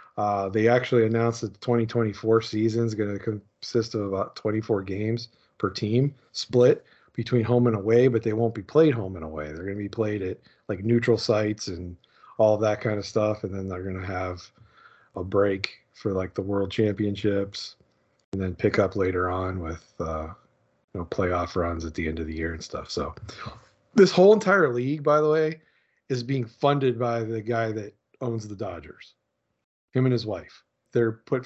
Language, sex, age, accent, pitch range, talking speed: English, male, 40-59, American, 100-120 Hz, 200 wpm